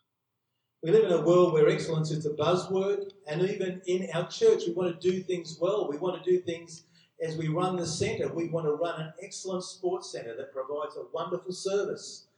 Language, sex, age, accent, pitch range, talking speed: English, male, 50-69, Australian, 155-195 Hz, 215 wpm